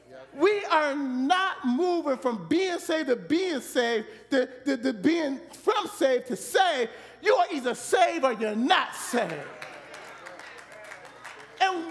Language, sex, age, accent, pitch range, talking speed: English, male, 40-59, American, 260-370 Hz, 135 wpm